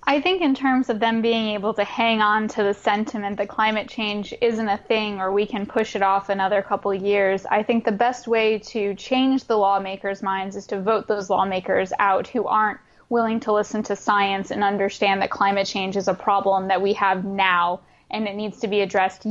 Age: 10-29